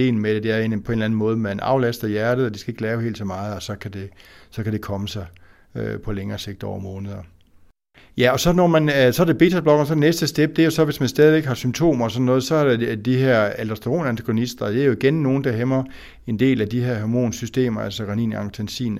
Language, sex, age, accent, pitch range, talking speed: Danish, male, 60-79, native, 100-125 Hz, 270 wpm